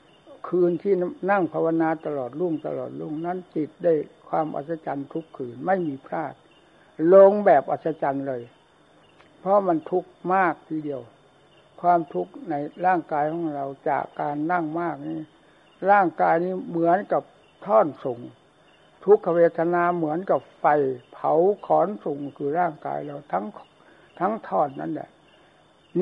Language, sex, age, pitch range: Thai, male, 60-79, 150-180 Hz